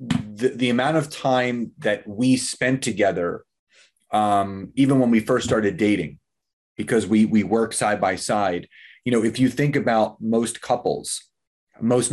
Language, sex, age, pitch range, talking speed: English, male, 30-49, 105-125 Hz, 160 wpm